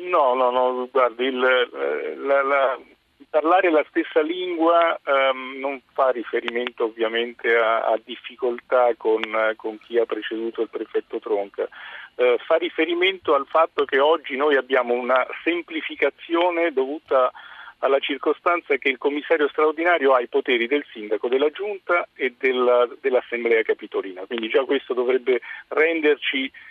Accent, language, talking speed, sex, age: native, Italian, 135 wpm, male, 50-69